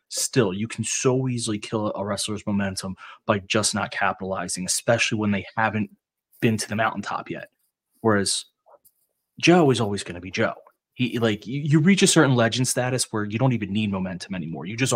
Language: English